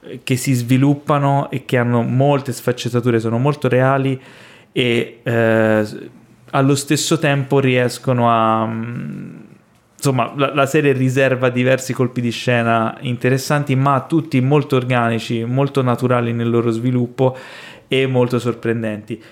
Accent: native